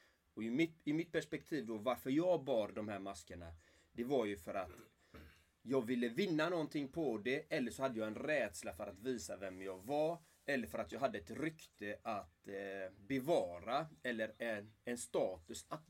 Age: 30-49